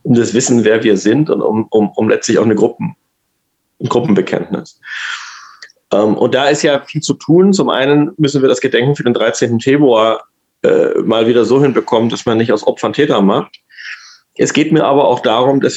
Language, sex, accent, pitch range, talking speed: German, male, German, 110-145 Hz, 195 wpm